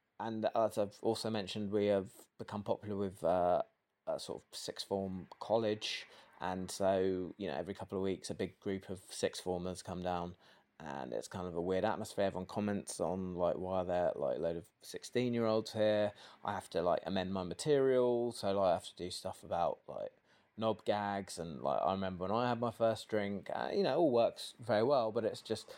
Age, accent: 20-39, British